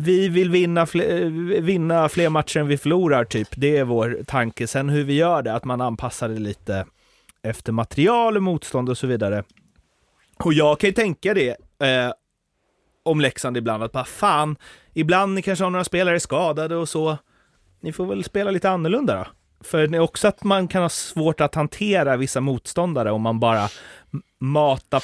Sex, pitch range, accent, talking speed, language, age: male, 125-165 Hz, native, 190 wpm, Swedish, 30-49